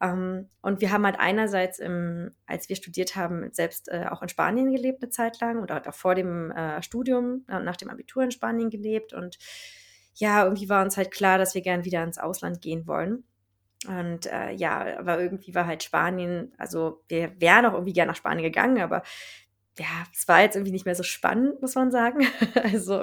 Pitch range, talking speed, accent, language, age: 170-210 Hz, 190 wpm, German, German, 20-39